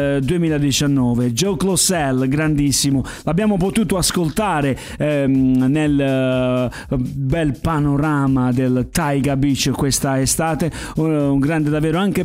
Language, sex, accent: Italian, male, native